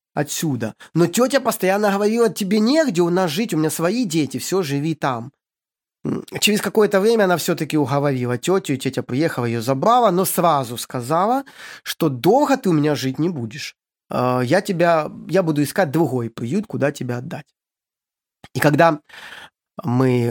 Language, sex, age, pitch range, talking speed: Russian, male, 20-39, 130-180 Hz, 155 wpm